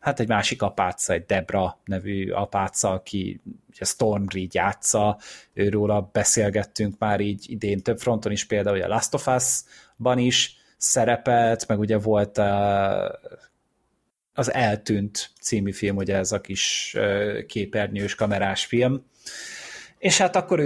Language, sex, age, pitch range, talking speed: Hungarian, male, 30-49, 110-145 Hz, 130 wpm